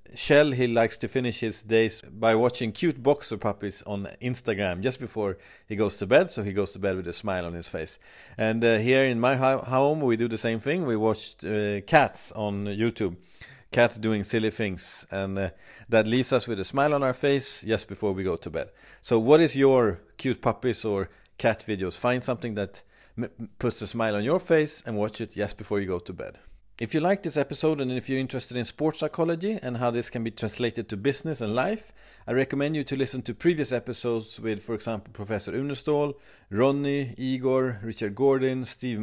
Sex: male